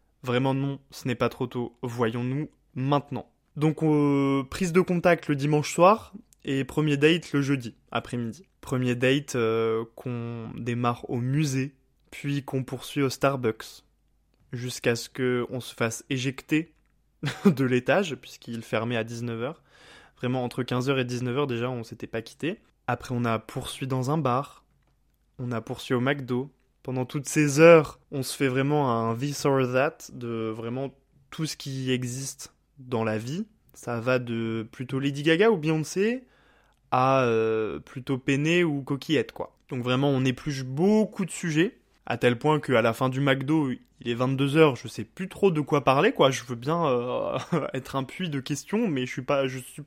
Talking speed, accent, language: 175 wpm, French, French